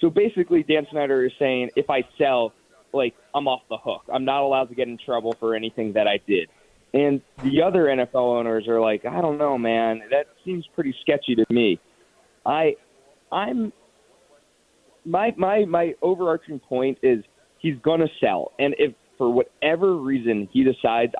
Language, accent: English, American